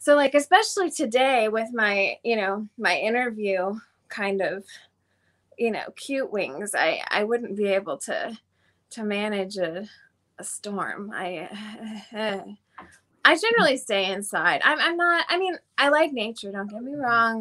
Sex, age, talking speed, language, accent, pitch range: female, 20-39, 155 wpm, English, American, 195-265 Hz